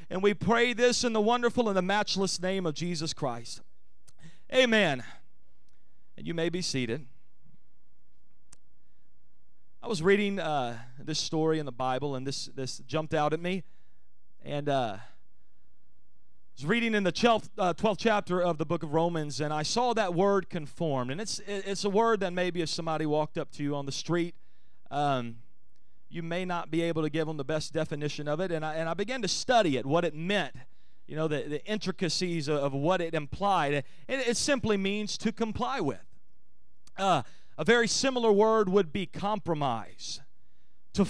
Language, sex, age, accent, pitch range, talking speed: English, male, 30-49, American, 145-205 Hz, 180 wpm